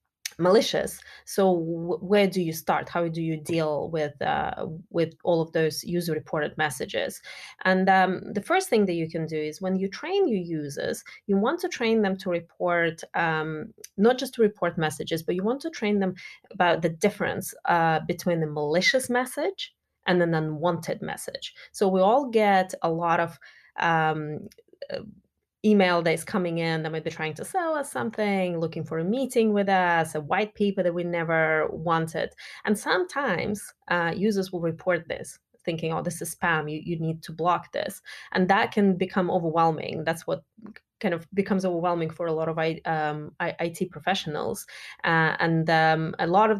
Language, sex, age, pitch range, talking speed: English, female, 20-39, 165-205 Hz, 180 wpm